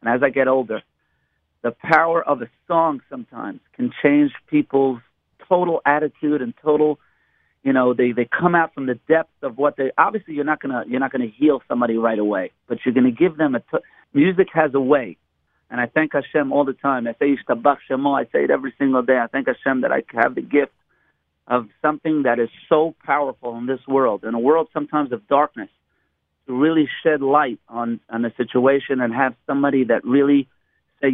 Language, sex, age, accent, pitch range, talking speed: English, male, 40-59, American, 125-160 Hz, 195 wpm